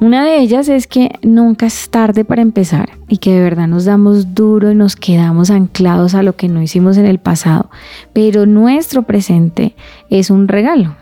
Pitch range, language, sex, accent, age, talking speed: 180-225 Hz, Spanish, female, Colombian, 30-49, 190 wpm